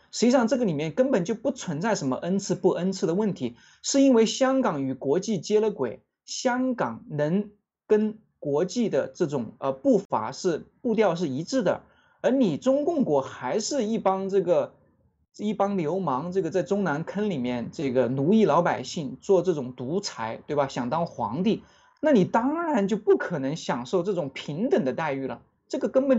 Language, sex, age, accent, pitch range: Chinese, male, 20-39, native, 170-240 Hz